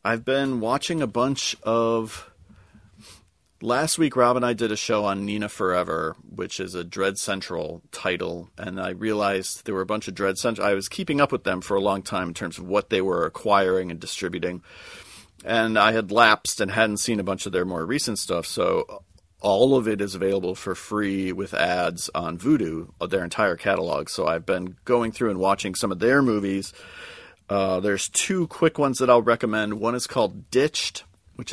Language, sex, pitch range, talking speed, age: English, male, 95-115 Hz, 200 wpm, 40-59